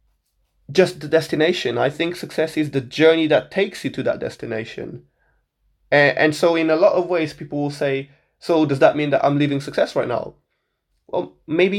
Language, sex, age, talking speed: English, male, 20-39, 195 wpm